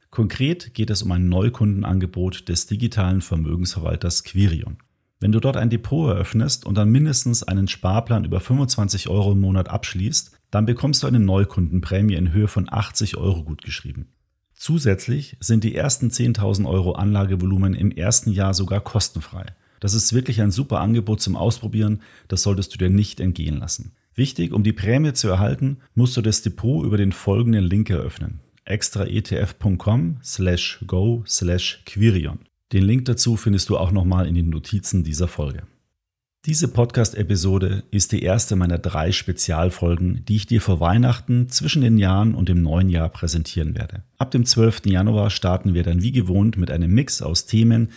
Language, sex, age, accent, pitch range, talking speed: German, male, 40-59, German, 90-115 Hz, 165 wpm